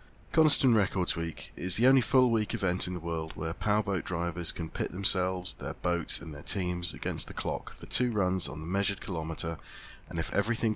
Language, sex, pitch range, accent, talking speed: English, male, 80-100 Hz, British, 200 wpm